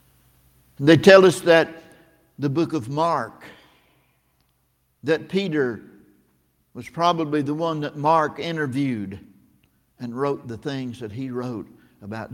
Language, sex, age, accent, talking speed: English, male, 60-79, American, 120 wpm